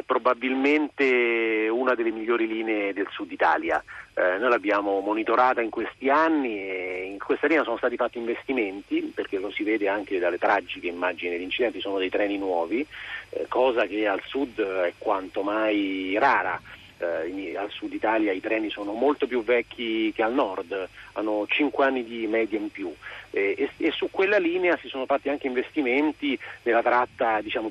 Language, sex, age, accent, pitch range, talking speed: Italian, male, 40-59, native, 110-140 Hz, 175 wpm